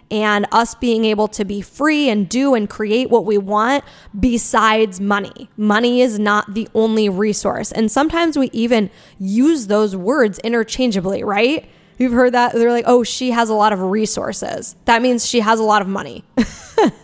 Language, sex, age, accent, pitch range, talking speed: English, female, 10-29, American, 205-245 Hz, 180 wpm